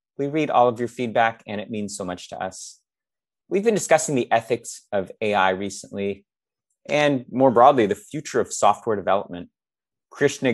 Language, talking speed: English, 170 wpm